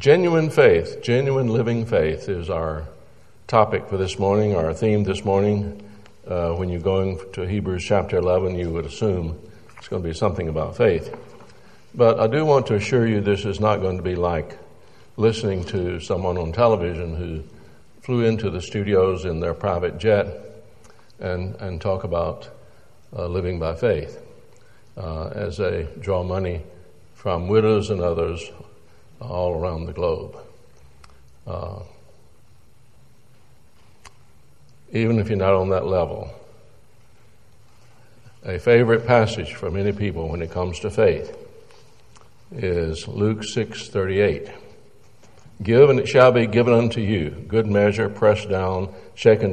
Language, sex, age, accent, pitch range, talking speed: English, male, 60-79, American, 90-115 Hz, 145 wpm